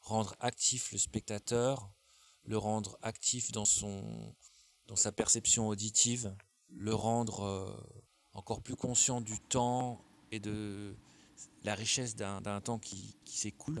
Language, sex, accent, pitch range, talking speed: French, male, French, 100-115 Hz, 135 wpm